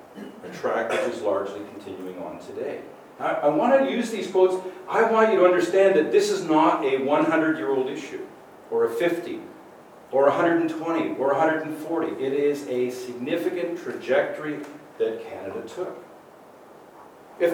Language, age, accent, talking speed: English, 50-69, American, 145 wpm